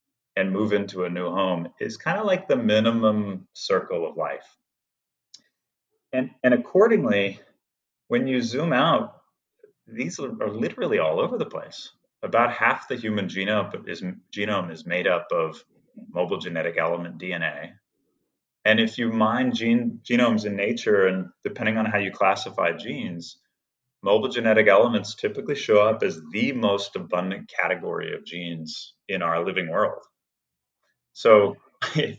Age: 30-49